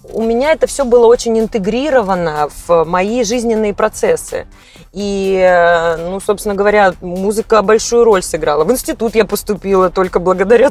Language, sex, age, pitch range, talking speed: Russian, female, 20-39, 190-250 Hz, 140 wpm